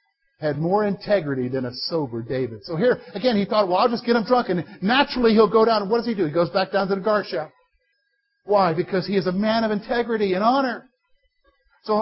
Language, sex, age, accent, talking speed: English, male, 50-69, American, 235 wpm